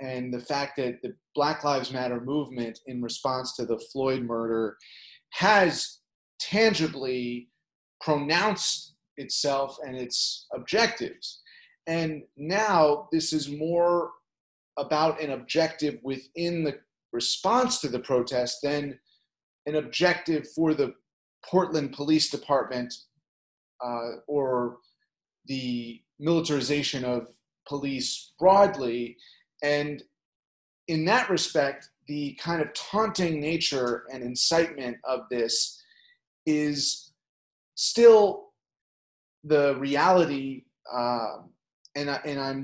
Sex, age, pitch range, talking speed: male, 30-49, 125-160 Hz, 105 wpm